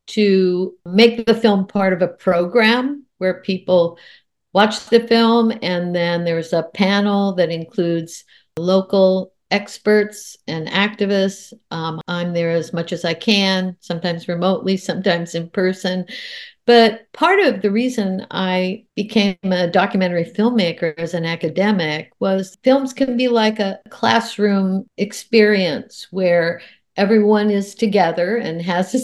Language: English